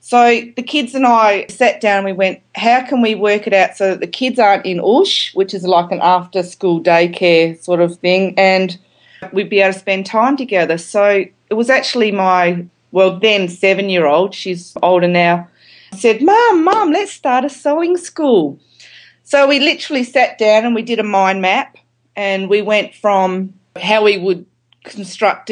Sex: female